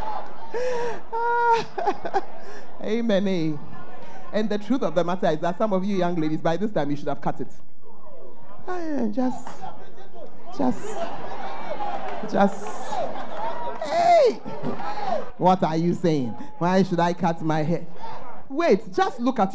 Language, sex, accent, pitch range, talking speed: English, male, Nigerian, 170-245 Hz, 130 wpm